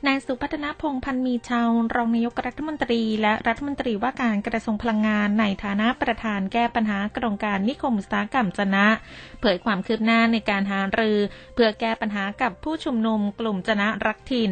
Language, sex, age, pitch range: Thai, female, 20-39, 200-240 Hz